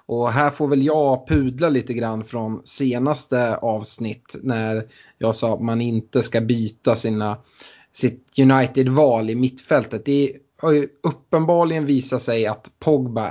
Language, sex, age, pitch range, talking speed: Swedish, male, 30-49, 115-135 Hz, 140 wpm